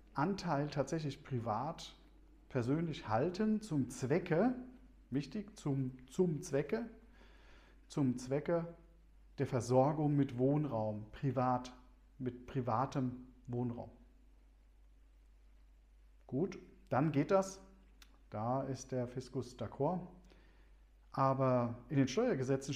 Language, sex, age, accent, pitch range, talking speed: German, male, 40-59, German, 115-155 Hz, 90 wpm